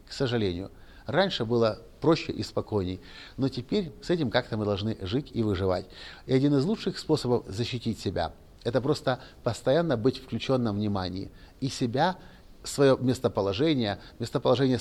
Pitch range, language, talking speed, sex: 100-130 Hz, Russian, 150 wpm, male